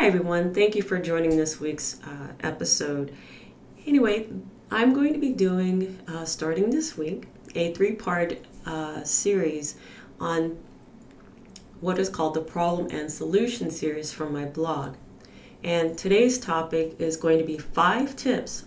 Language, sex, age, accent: English, female, 30-49, American